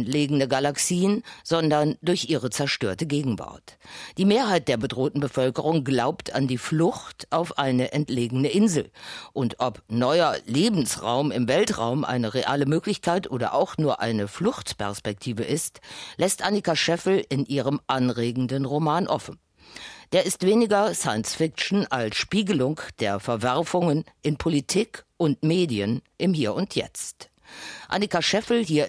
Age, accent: 50-69, German